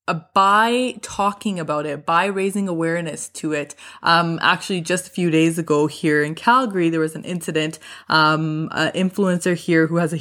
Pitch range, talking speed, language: 155-195 Hz, 180 wpm, English